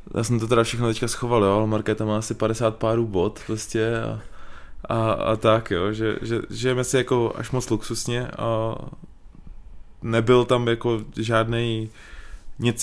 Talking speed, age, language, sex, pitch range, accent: 165 wpm, 20-39, Czech, male, 105-115 Hz, native